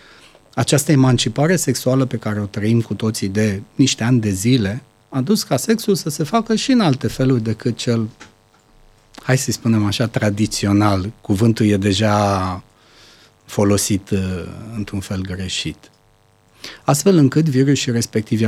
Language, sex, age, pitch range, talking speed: Romanian, male, 40-59, 110-145 Hz, 140 wpm